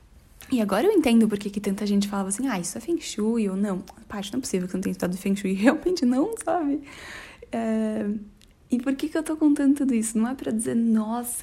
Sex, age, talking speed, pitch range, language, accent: female, 10-29, 250 wpm, 200-245 Hz, Portuguese, Brazilian